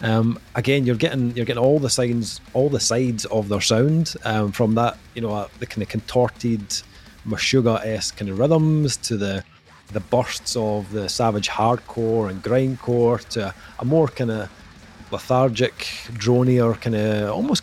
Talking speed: 175 wpm